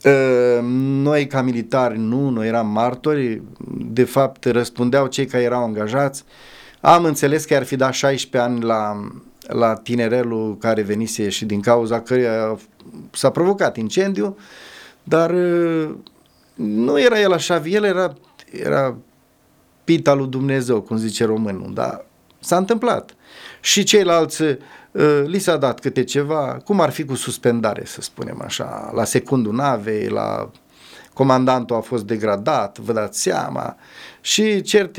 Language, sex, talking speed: Romanian, male, 135 wpm